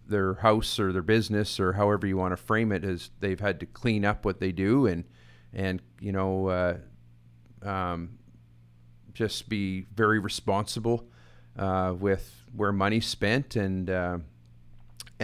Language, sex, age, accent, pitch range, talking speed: English, male, 40-59, American, 95-115 Hz, 150 wpm